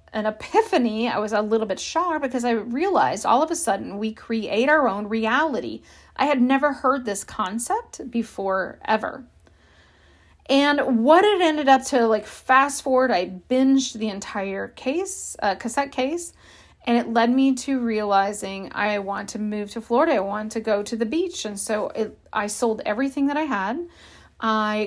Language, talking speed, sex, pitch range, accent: English, 175 wpm, female, 205-275 Hz, American